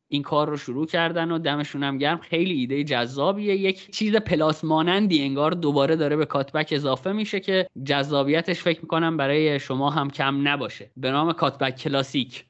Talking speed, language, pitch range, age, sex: 170 wpm, Persian, 140-195 Hz, 30-49, male